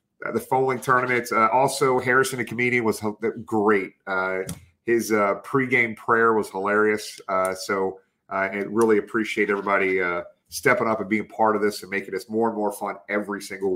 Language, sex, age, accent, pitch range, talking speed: English, male, 40-59, American, 100-120 Hz, 185 wpm